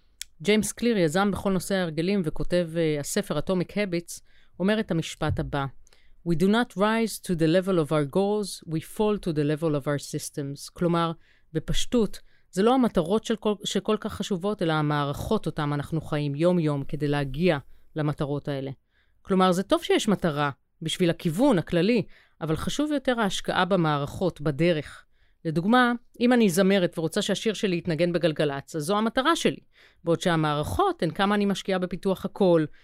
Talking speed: 160 wpm